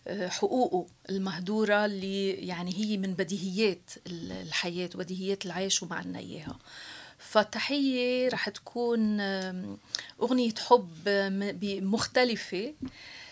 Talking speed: 80 wpm